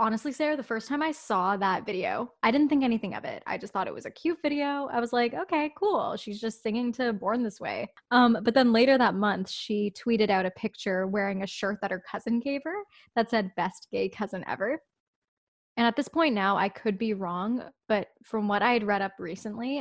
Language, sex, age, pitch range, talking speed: English, female, 10-29, 205-255 Hz, 235 wpm